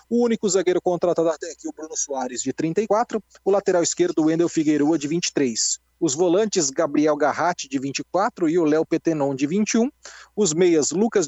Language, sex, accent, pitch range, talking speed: Portuguese, male, Brazilian, 165-225 Hz, 175 wpm